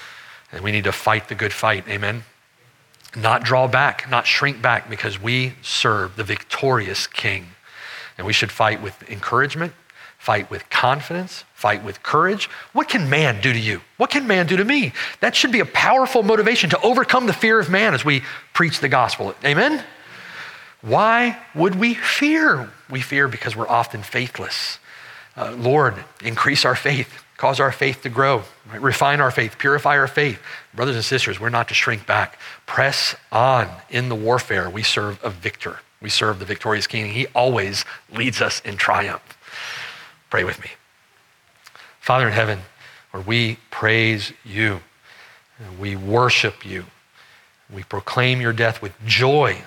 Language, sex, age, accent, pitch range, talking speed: English, male, 40-59, American, 105-140 Hz, 165 wpm